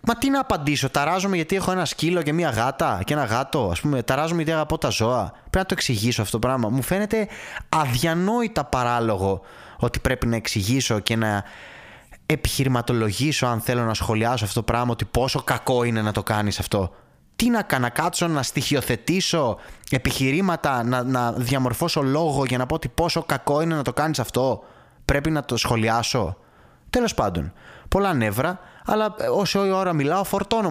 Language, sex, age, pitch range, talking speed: Greek, male, 20-39, 120-180 Hz, 180 wpm